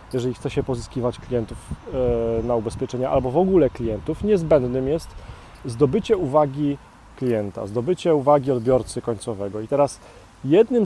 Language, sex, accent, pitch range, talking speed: Polish, male, native, 120-155 Hz, 125 wpm